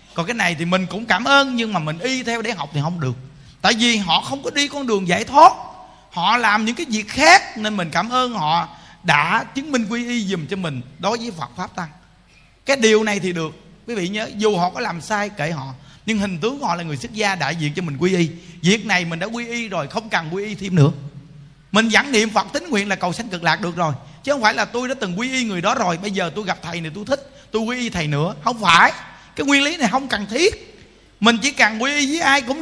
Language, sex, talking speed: Vietnamese, male, 275 wpm